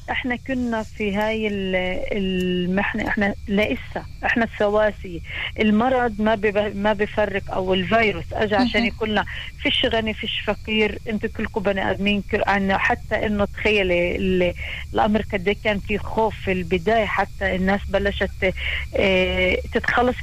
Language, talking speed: Hebrew, 120 wpm